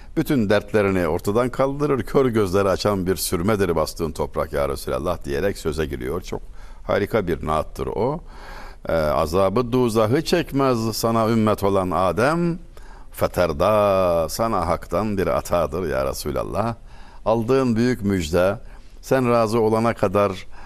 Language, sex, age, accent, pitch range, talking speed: Turkish, male, 60-79, native, 90-125 Hz, 125 wpm